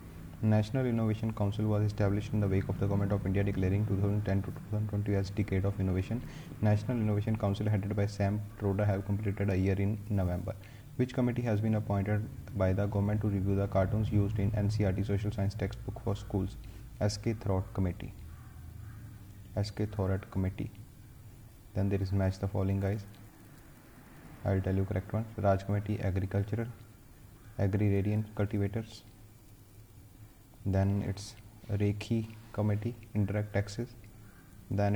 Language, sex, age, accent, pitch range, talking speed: English, male, 30-49, Indian, 100-115 Hz, 150 wpm